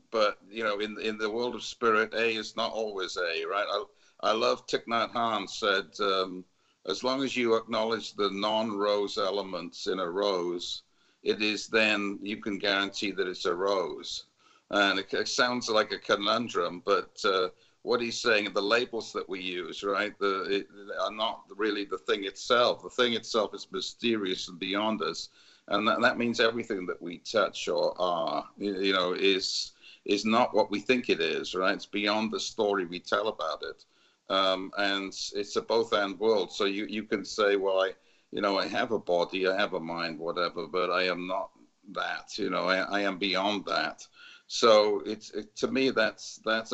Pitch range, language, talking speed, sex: 95-135 Hz, English, 195 wpm, male